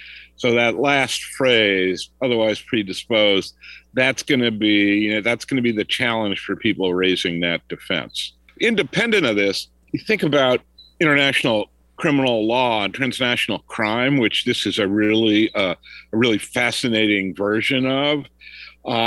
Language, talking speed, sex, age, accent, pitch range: English, 150 wpm, male, 50-69, American, 100-135 Hz